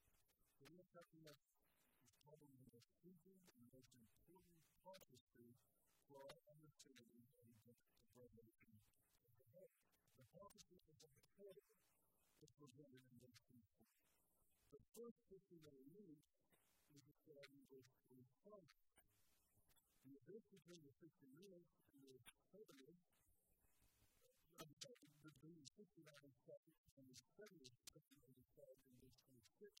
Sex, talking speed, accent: female, 50 wpm, American